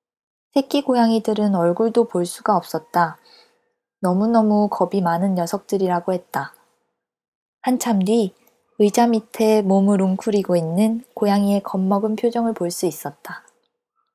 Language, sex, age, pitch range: Korean, female, 20-39, 190-235 Hz